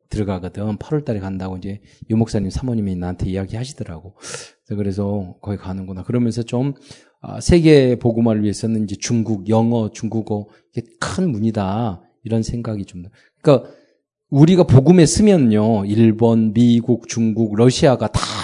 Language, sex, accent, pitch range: Korean, male, native, 105-150 Hz